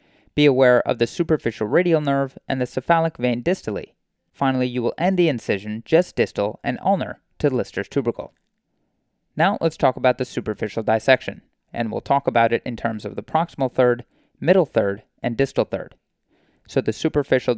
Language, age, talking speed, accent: English, 20-39, 175 wpm, American